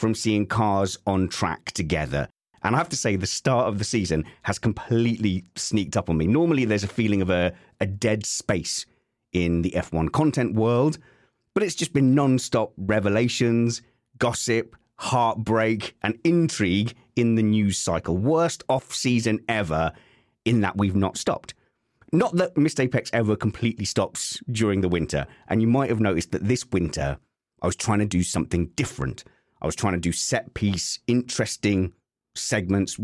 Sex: male